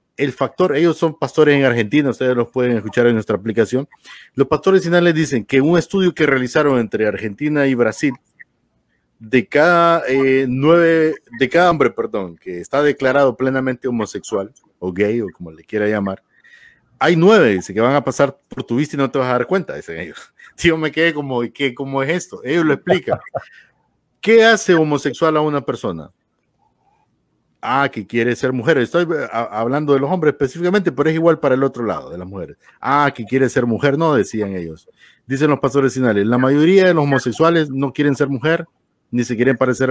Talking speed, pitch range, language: 195 wpm, 115-150 Hz, Spanish